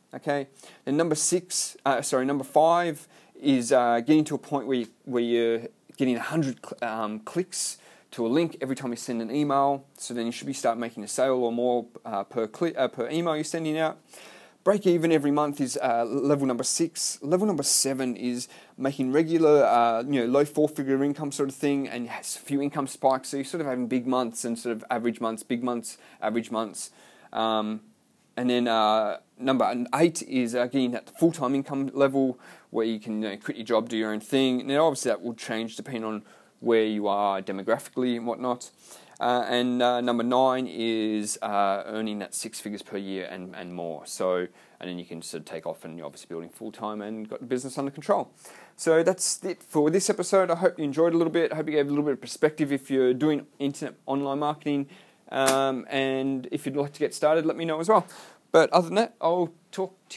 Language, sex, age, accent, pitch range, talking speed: English, male, 30-49, Australian, 115-155 Hz, 220 wpm